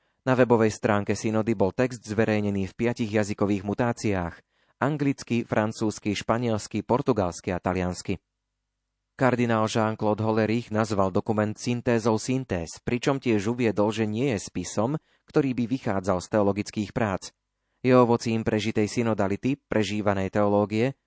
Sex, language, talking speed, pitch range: male, Slovak, 125 wpm, 100-120 Hz